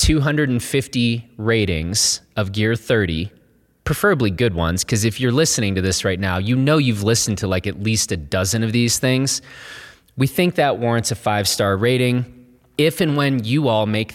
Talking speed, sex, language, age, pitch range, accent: 180 wpm, male, English, 30-49, 100-125 Hz, American